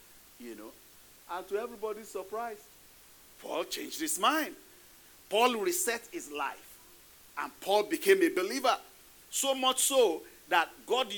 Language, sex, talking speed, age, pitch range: English, male, 130 wpm, 40-59, 205-295 Hz